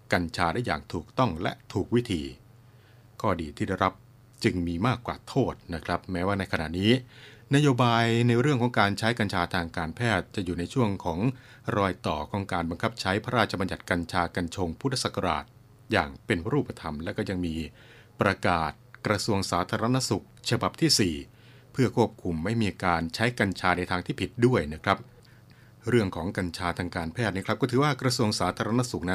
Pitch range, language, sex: 90-120 Hz, Thai, male